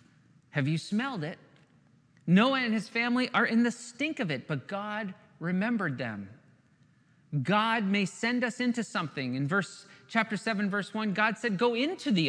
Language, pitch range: English, 155-235 Hz